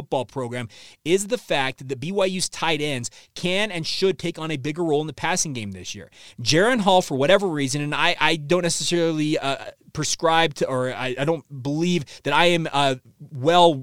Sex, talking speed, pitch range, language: male, 200 wpm, 140-180 Hz, English